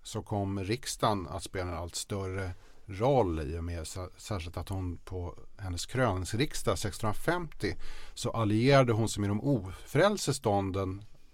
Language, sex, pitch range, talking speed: Swedish, male, 90-120 Hz, 145 wpm